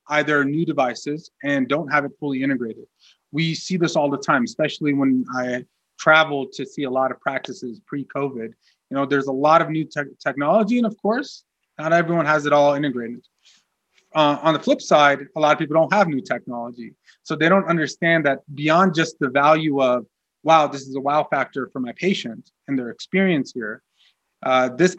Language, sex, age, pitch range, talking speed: English, male, 30-49, 135-165 Hz, 195 wpm